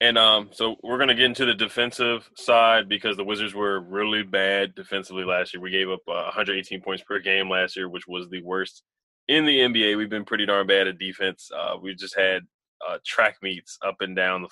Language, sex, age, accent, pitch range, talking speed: English, male, 20-39, American, 95-115 Hz, 225 wpm